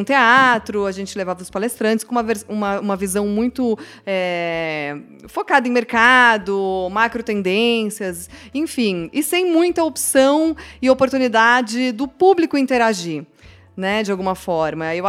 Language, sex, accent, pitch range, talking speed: Portuguese, female, Brazilian, 190-235 Hz, 125 wpm